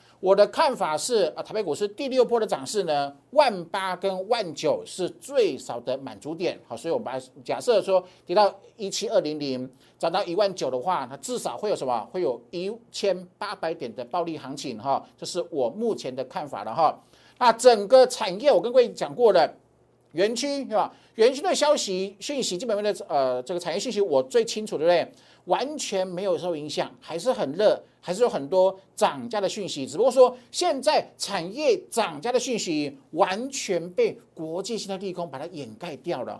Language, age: Chinese, 50-69